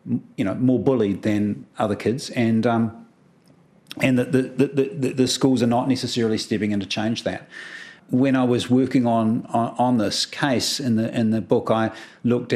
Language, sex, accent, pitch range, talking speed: English, male, Australian, 110-130 Hz, 190 wpm